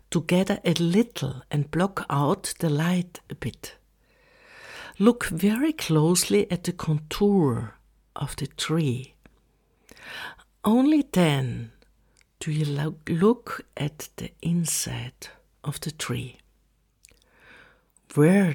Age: 60-79